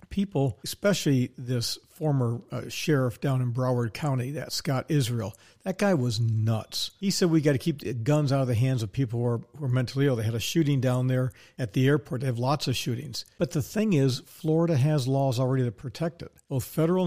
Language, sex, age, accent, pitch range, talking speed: English, male, 50-69, American, 125-150 Hz, 220 wpm